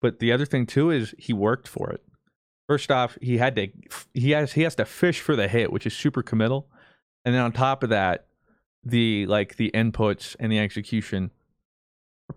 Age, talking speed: 20-39, 205 wpm